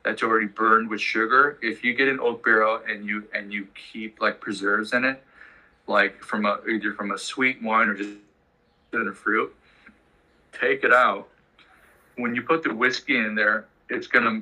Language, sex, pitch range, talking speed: English, male, 105-115 Hz, 185 wpm